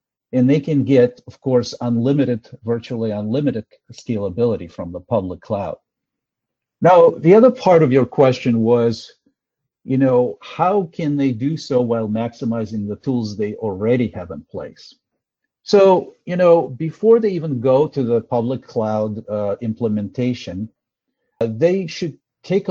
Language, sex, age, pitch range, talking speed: English, male, 50-69, 115-150 Hz, 145 wpm